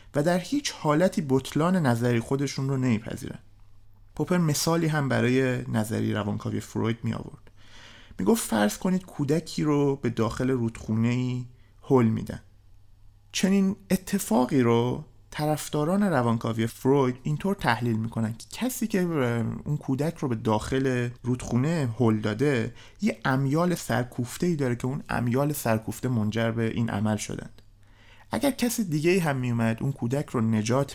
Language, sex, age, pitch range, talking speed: Persian, male, 30-49, 115-150 Hz, 140 wpm